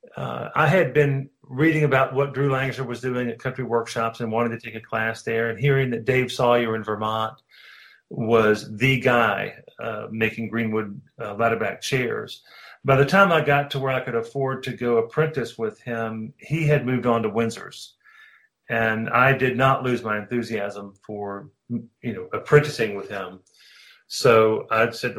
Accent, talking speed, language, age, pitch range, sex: American, 175 wpm, English, 40-59, 110-135 Hz, male